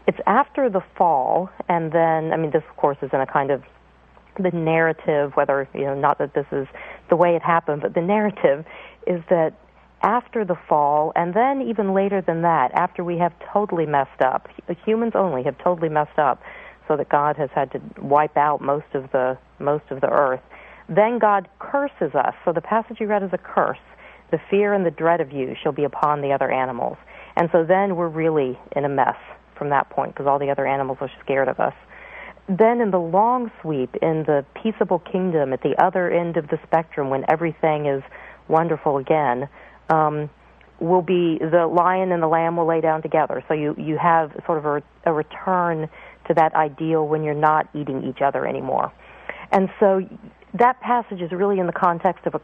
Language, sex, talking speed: English, female, 205 wpm